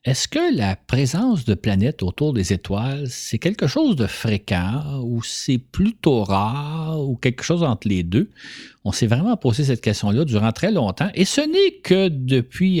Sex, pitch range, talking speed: male, 105-165 Hz, 180 wpm